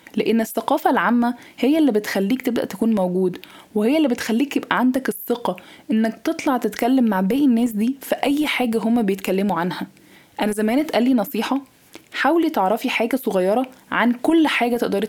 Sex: female